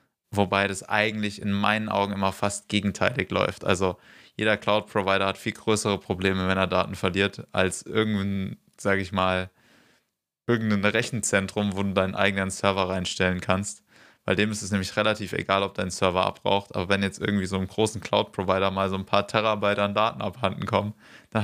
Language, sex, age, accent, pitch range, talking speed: German, male, 20-39, German, 100-110 Hz, 180 wpm